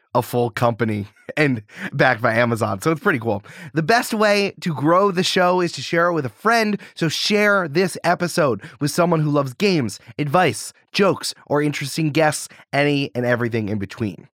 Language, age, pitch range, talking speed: English, 30-49, 120-180 Hz, 185 wpm